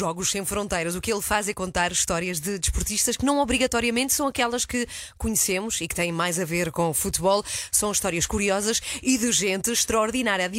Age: 20-39